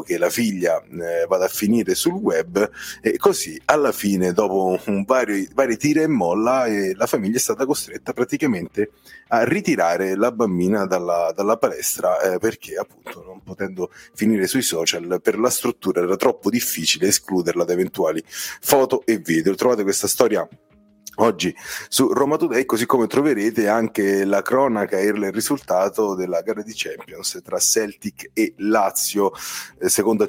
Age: 30-49